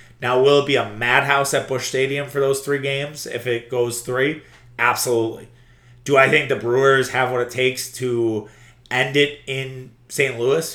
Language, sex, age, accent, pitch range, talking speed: English, male, 30-49, American, 120-145 Hz, 185 wpm